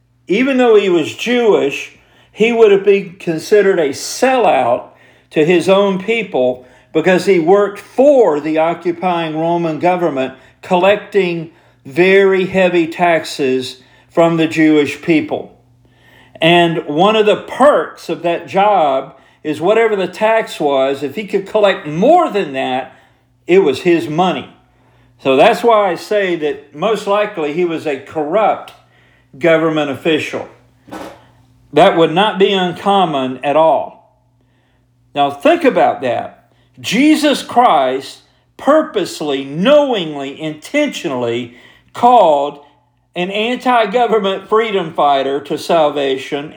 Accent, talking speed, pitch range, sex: American, 120 wpm, 140-205 Hz, male